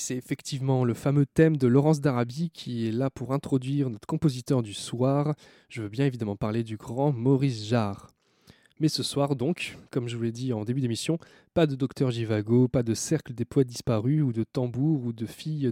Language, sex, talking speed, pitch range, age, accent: French, male, 205 wpm, 115-145 Hz, 20-39, French